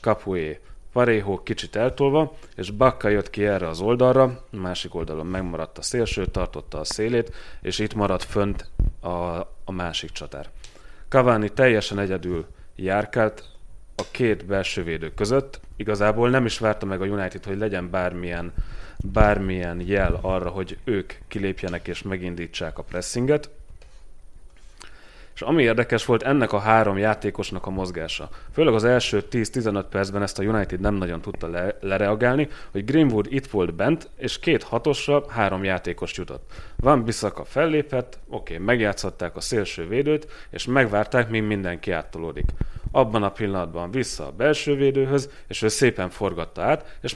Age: 30-49